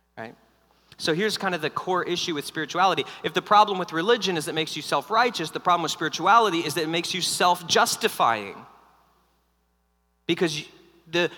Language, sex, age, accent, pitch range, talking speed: English, male, 40-59, American, 135-185 Hz, 165 wpm